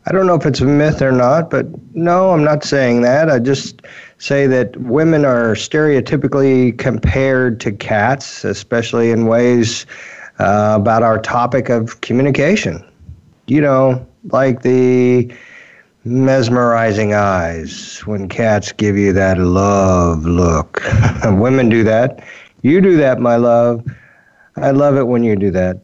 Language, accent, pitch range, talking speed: English, American, 105-125 Hz, 145 wpm